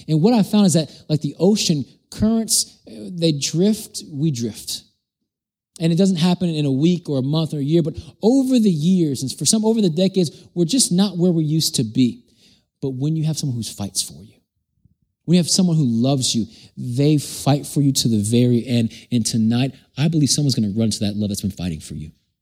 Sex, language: male, English